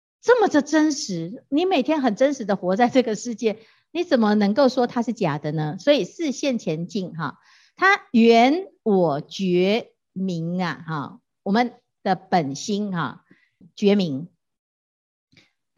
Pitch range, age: 185-275 Hz, 50-69